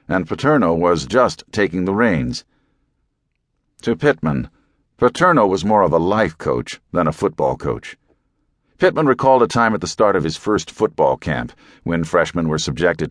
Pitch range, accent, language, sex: 85-140 Hz, American, English, male